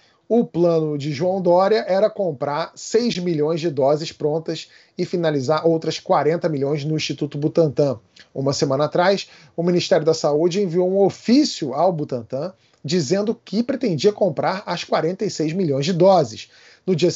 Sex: male